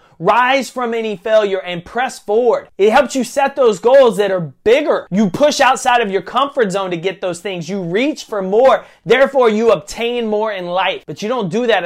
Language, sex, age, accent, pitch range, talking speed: English, male, 30-49, American, 180-230 Hz, 215 wpm